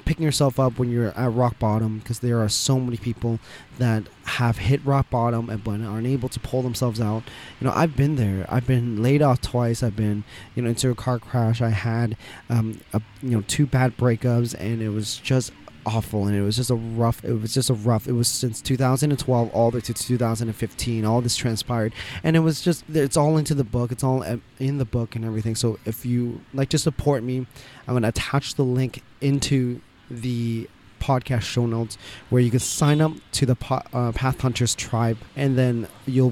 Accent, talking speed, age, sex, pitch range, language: American, 210 wpm, 20-39, male, 115-130 Hz, English